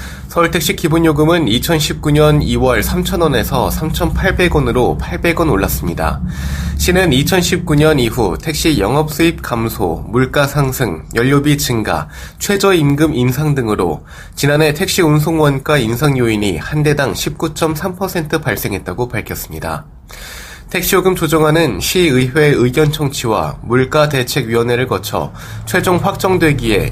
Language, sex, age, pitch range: Korean, male, 20-39, 115-155 Hz